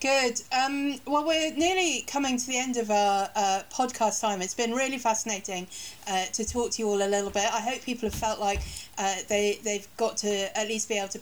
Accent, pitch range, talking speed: British, 190-225 Hz, 235 wpm